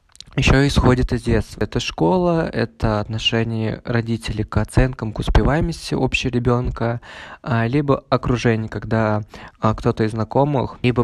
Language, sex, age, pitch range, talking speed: Russian, male, 20-39, 110-125 Hz, 120 wpm